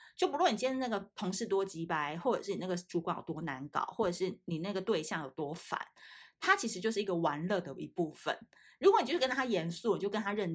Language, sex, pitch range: Chinese, female, 170-225 Hz